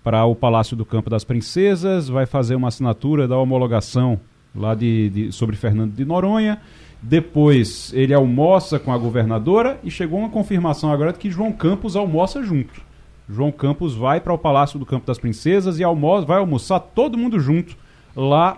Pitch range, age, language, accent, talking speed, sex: 125-175 Hz, 30-49, Portuguese, Brazilian, 165 wpm, male